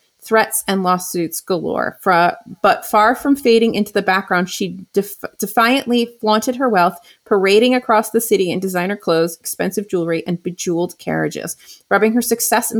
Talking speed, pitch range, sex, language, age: 150 wpm, 180-225 Hz, female, English, 30-49